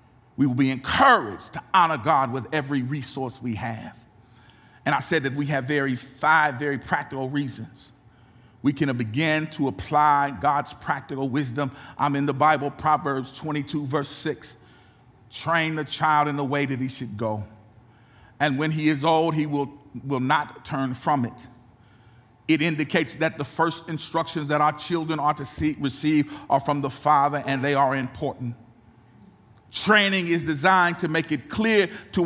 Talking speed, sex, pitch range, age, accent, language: 165 wpm, male, 120-155 Hz, 40-59, American, English